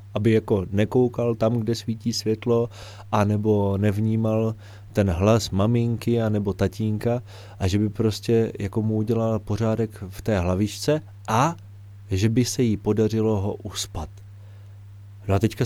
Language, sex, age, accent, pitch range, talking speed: Czech, male, 30-49, native, 100-120 Hz, 135 wpm